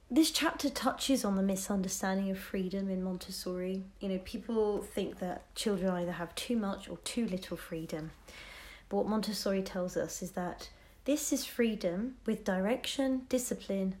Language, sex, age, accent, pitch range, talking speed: English, female, 30-49, British, 180-235 Hz, 160 wpm